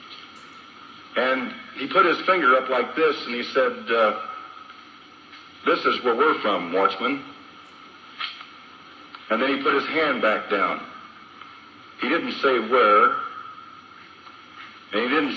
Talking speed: 130 wpm